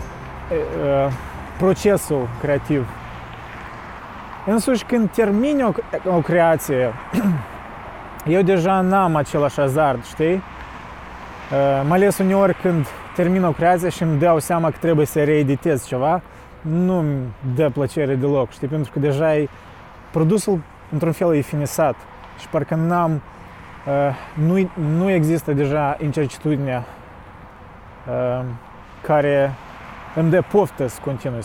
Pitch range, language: 125-175 Hz, Romanian